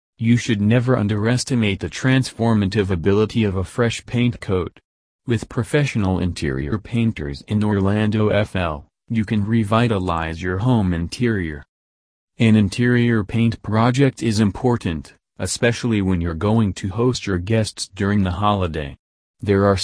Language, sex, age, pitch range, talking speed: English, male, 40-59, 90-115 Hz, 135 wpm